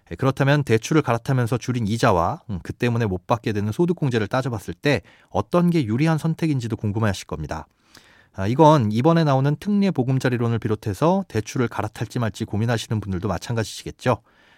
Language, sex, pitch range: Korean, male, 105-150 Hz